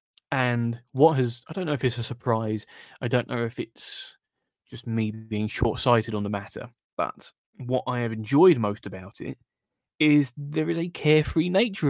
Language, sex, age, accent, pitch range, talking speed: English, male, 20-39, British, 115-150 Hz, 180 wpm